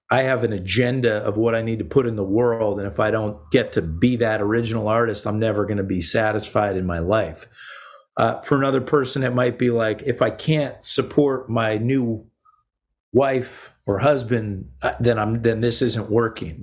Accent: American